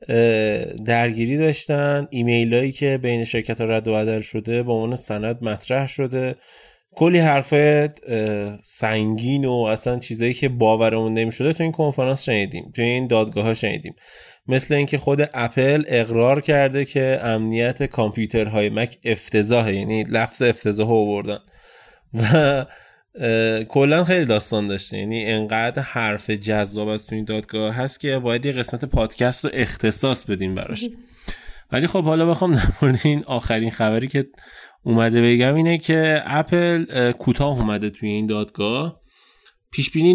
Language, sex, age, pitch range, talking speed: Persian, male, 20-39, 110-140 Hz, 140 wpm